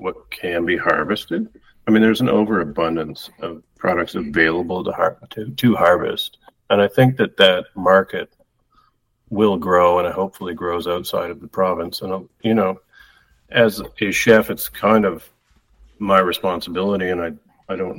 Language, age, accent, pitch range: English, 50-69, American, 85-100 Hz